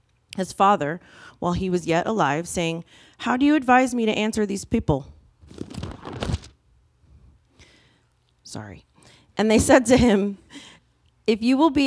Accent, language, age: American, English, 30-49